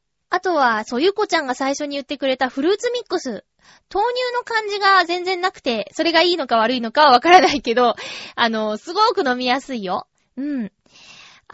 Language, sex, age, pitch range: Japanese, female, 20-39, 240-355 Hz